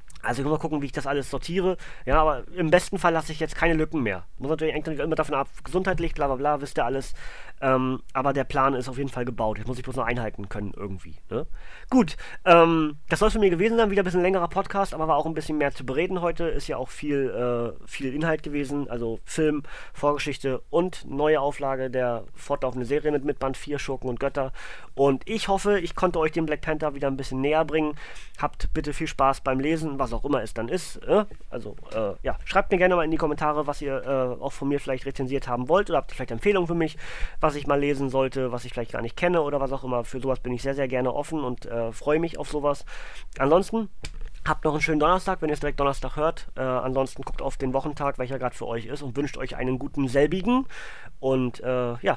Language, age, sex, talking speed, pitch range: German, 30-49, male, 245 wpm, 130-160 Hz